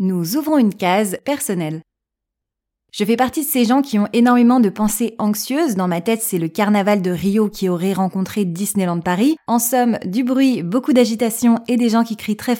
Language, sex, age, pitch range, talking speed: French, female, 20-39, 185-240 Hz, 200 wpm